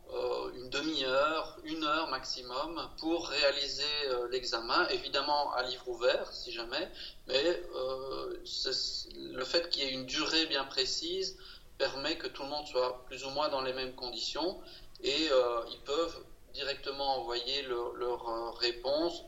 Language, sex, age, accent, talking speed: French, male, 40-59, French, 145 wpm